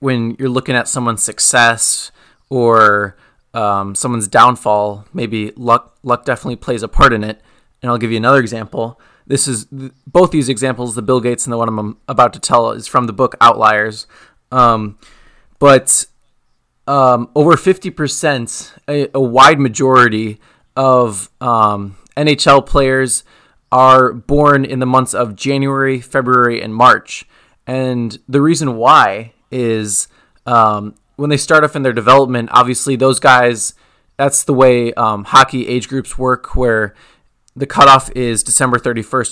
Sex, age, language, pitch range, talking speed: male, 20-39, English, 115-135 Hz, 150 wpm